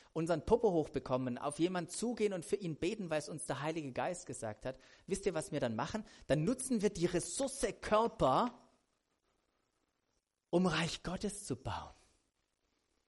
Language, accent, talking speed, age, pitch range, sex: German, German, 160 wpm, 40-59, 130-175 Hz, male